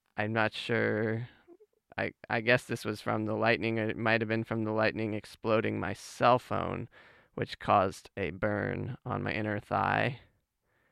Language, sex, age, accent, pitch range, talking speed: English, male, 20-39, American, 105-125 Hz, 165 wpm